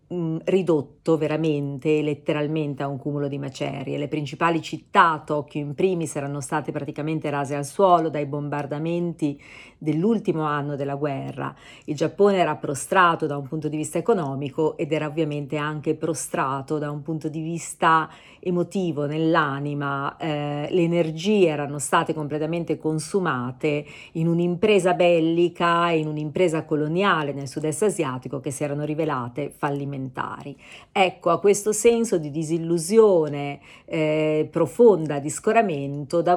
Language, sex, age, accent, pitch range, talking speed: Italian, female, 40-59, native, 145-175 Hz, 130 wpm